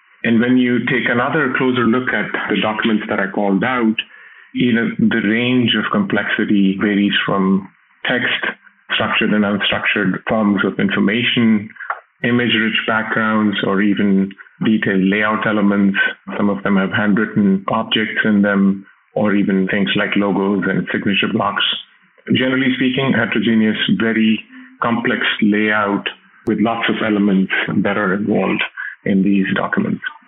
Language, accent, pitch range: English, Indian, 100-115 Hz